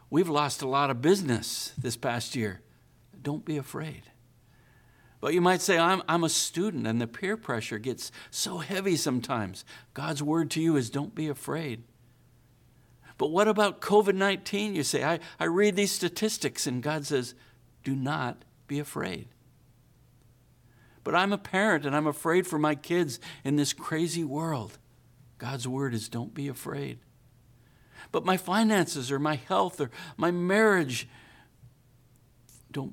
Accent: American